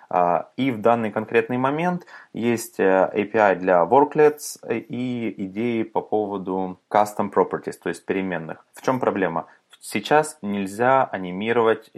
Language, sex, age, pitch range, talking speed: Russian, male, 20-39, 90-115 Hz, 125 wpm